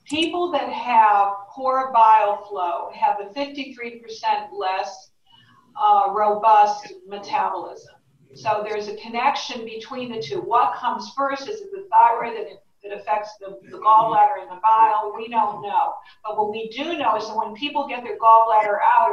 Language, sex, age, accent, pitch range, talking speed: English, female, 50-69, American, 210-265 Hz, 160 wpm